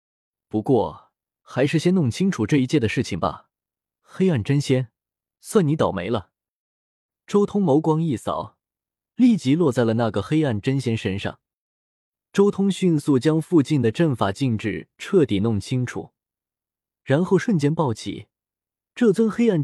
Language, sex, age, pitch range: Chinese, male, 20-39, 115-170 Hz